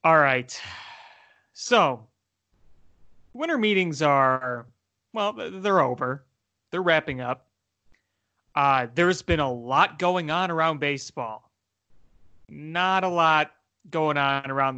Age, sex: 30-49, male